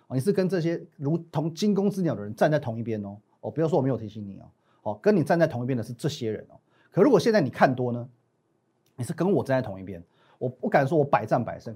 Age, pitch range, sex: 30-49, 115-165 Hz, male